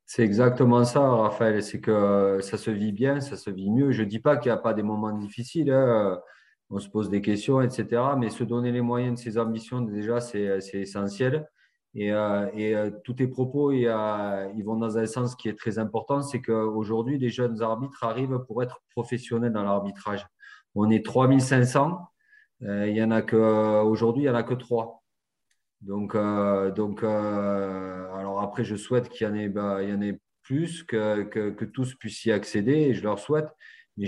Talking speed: 190 wpm